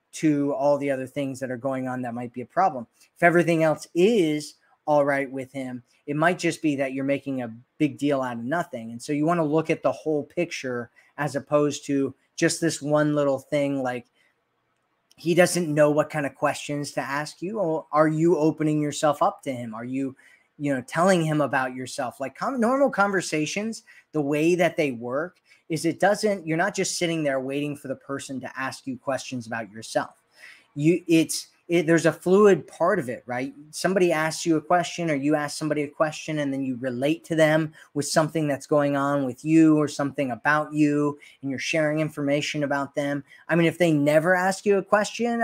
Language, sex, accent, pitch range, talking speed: English, male, American, 135-165 Hz, 205 wpm